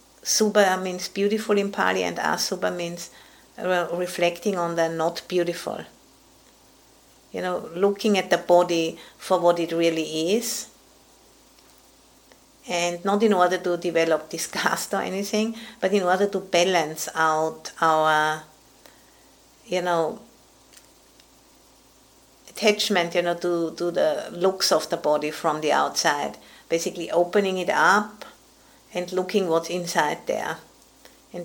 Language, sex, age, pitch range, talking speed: English, female, 50-69, 165-195 Hz, 125 wpm